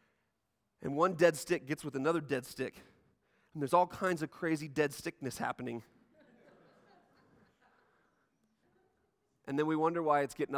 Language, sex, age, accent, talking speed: English, male, 30-49, American, 140 wpm